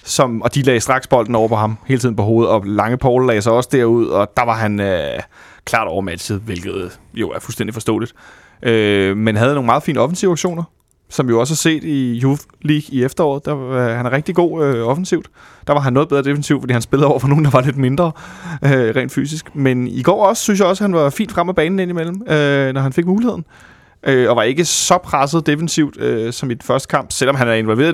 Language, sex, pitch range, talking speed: Danish, male, 115-150 Hz, 245 wpm